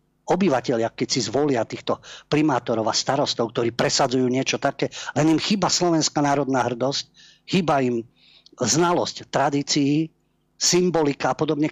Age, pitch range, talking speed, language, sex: 50-69, 115-150 Hz, 130 wpm, Slovak, male